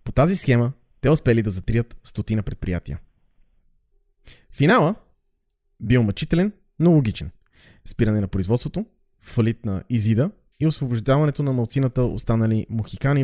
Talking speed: 120 wpm